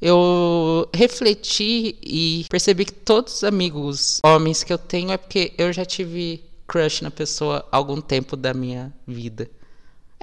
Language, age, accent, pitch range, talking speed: Portuguese, 20-39, Brazilian, 135-190 Hz, 160 wpm